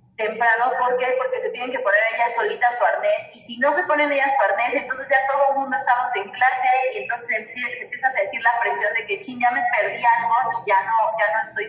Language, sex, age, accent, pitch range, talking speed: Spanish, female, 30-49, Mexican, 235-320 Hz, 255 wpm